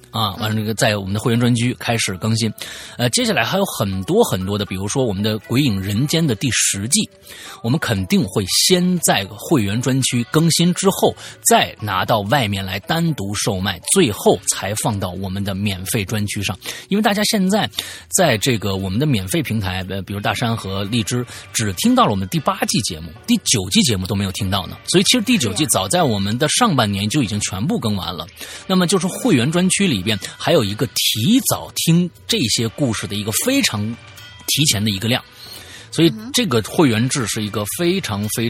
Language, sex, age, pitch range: Chinese, male, 30-49, 100-135 Hz